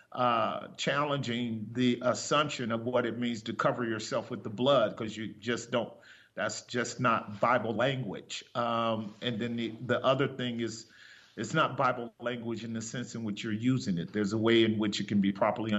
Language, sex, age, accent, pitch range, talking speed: English, male, 40-59, American, 115-130 Hz, 200 wpm